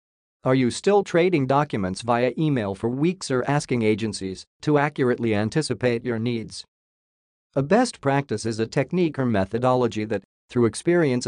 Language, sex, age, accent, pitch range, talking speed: English, male, 40-59, American, 115-145 Hz, 150 wpm